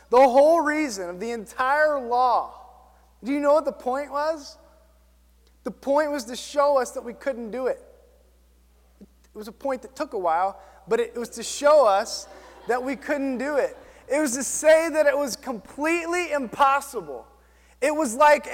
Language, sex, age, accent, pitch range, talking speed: English, male, 20-39, American, 205-290 Hz, 180 wpm